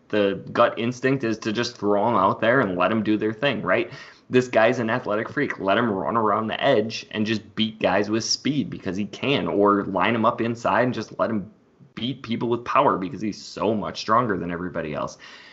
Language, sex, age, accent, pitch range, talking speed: English, male, 20-39, American, 100-115 Hz, 225 wpm